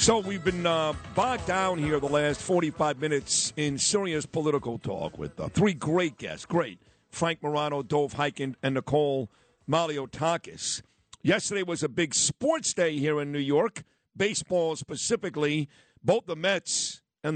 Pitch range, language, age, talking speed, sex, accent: 150-175 Hz, English, 50-69, 150 wpm, male, American